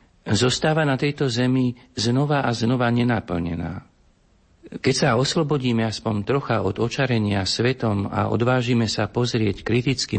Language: Slovak